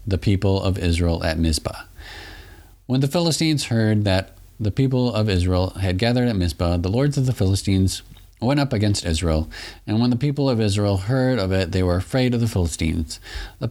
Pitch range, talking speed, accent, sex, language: 90-115 Hz, 195 wpm, American, male, English